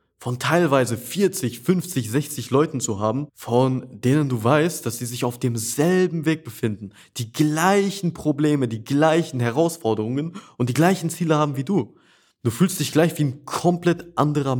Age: 20-39